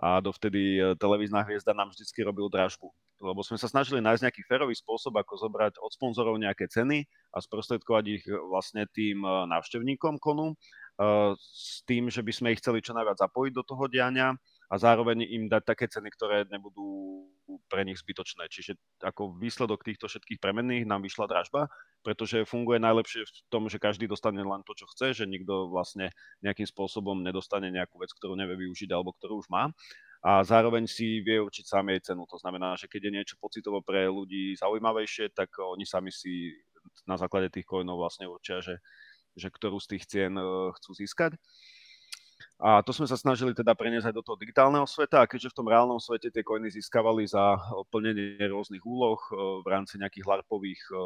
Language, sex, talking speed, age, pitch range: Slovak, male, 180 wpm, 30-49, 95-115 Hz